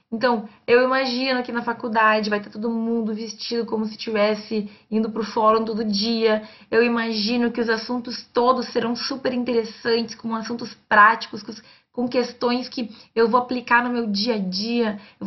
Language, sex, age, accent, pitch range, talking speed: Portuguese, female, 20-39, Brazilian, 210-245 Hz, 175 wpm